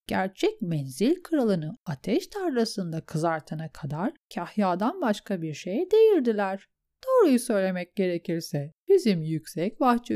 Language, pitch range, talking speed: Turkish, 190-295 Hz, 105 wpm